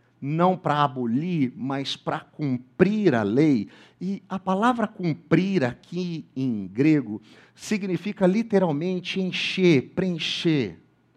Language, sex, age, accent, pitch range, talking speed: Portuguese, male, 50-69, Brazilian, 145-195 Hz, 100 wpm